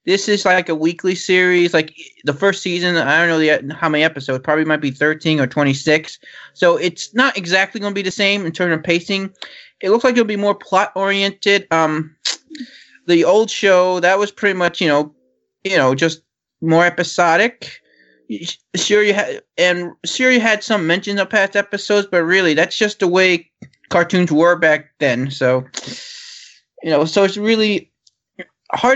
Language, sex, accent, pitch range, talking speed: English, male, American, 165-210 Hz, 180 wpm